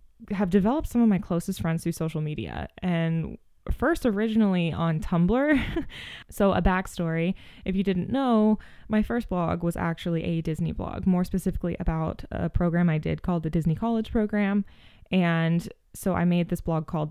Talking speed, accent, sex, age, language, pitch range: 170 wpm, American, female, 20-39, English, 165-195 Hz